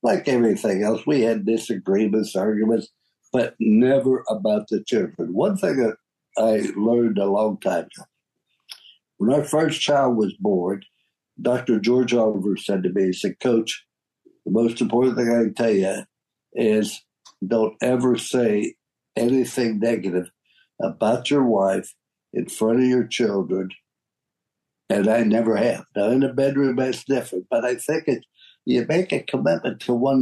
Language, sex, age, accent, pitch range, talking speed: English, male, 60-79, American, 110-125 Hz, 155 wpm